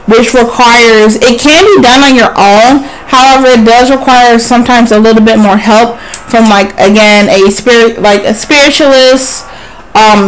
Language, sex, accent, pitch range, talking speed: English, female, American, 210-255 Hz, 165 wpm